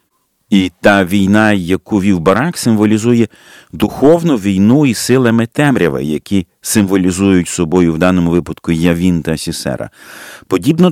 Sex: male